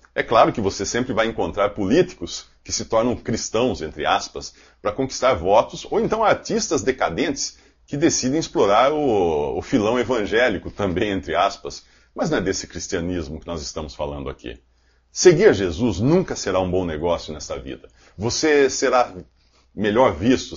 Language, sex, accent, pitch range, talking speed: English, male, Brazilian, 85-115 Hz, 160 wpm